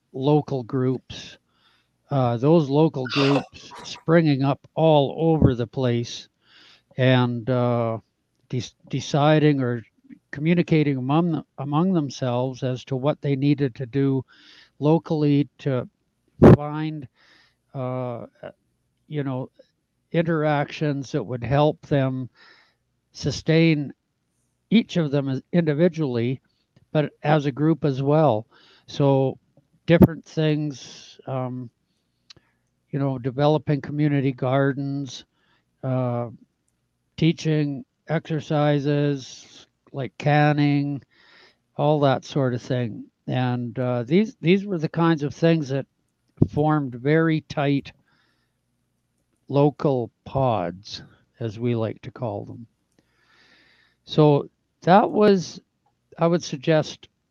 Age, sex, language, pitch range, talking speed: 60-79, male, English, 130-155 Hz, 100 wpm